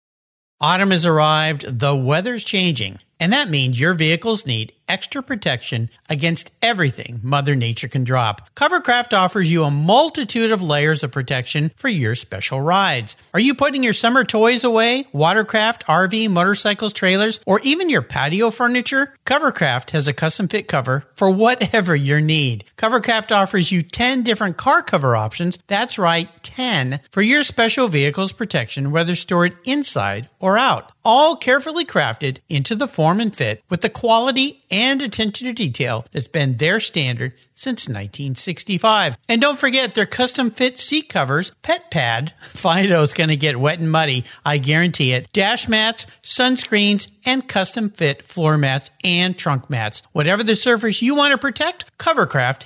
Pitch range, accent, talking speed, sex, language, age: 145-230 Hz, American, 155 wpm, male, English, 50-69